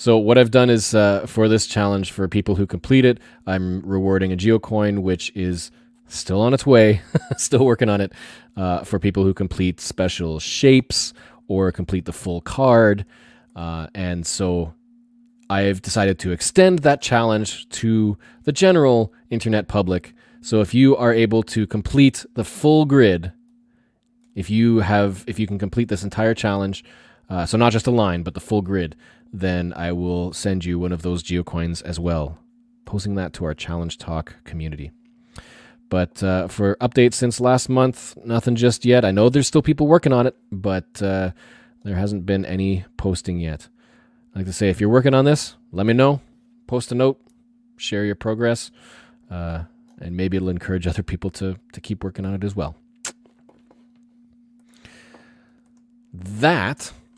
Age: 20-39